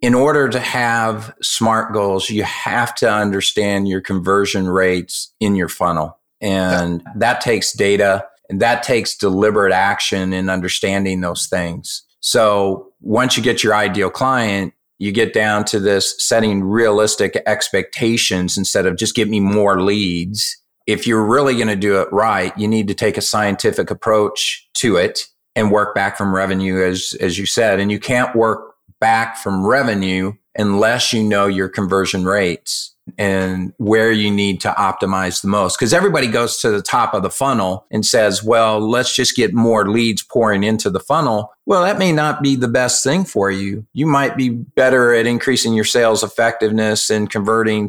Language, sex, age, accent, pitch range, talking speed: English, male, 40-59, American, 95-115 Hz, 175 wpm